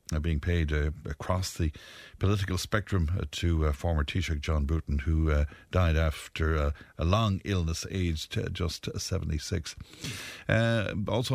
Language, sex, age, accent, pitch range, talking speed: English, male, 60-79, Irish, 80-100 Hz, 150 wpm